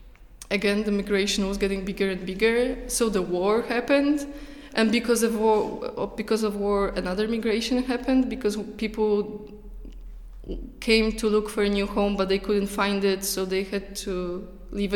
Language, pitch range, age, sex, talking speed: English, 200-230 Hz, 20-39, female, 165 wpm